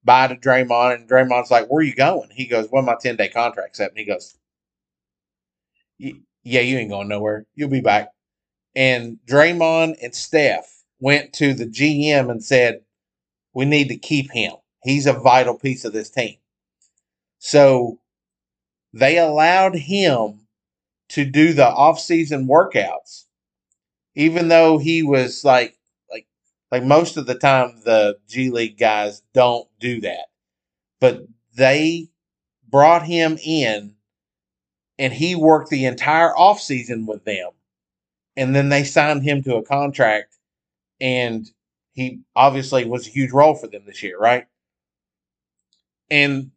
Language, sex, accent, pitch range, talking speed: English, male, American, 115-150 Hz, 145 wpm